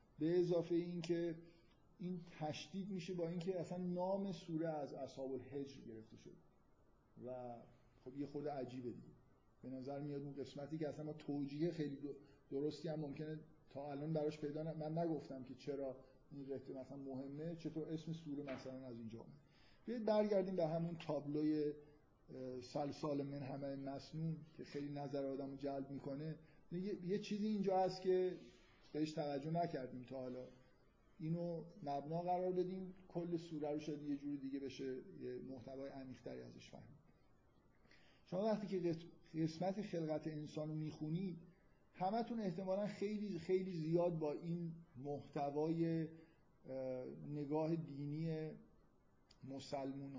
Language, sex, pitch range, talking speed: Persian, male, 140-170 Hz, 135 wpm